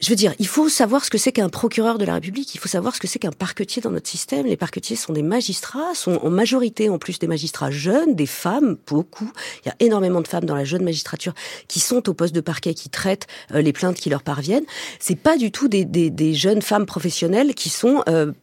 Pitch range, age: 175-235 Hz, 40-59